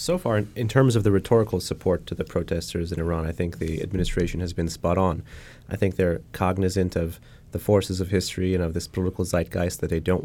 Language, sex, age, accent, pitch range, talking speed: English, male, 30-49, American, 85-95 Hz, 220 wpm